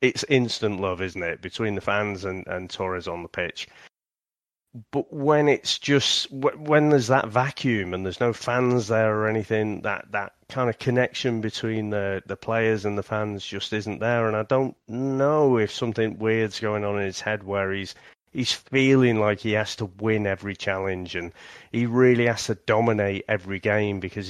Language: English